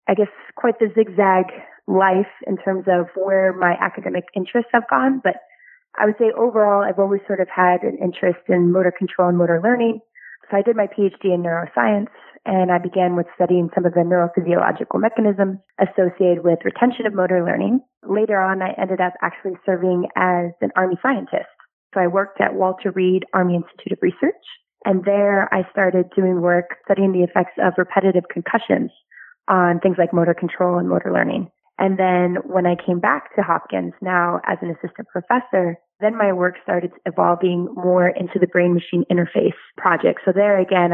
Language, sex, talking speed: English, female, 180 wpm